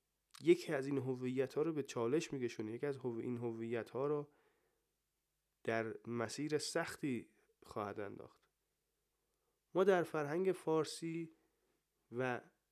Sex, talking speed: male, 125 wpm